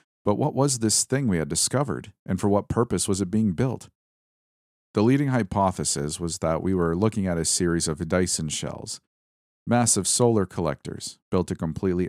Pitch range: 80-105 Hz